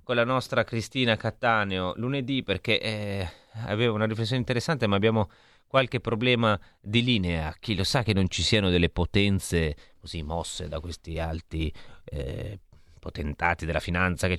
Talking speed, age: 155 wpm, 30-49